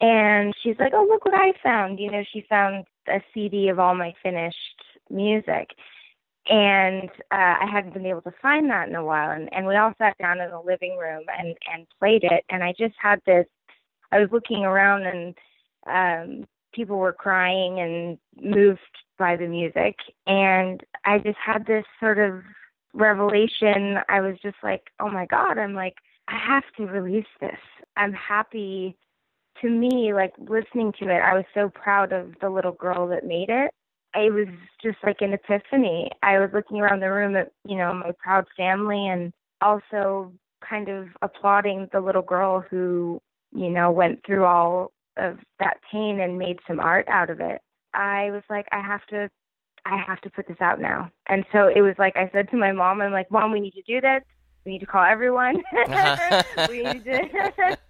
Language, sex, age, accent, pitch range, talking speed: English, female, 20-39, American, 185-210 Hz, 195 wpm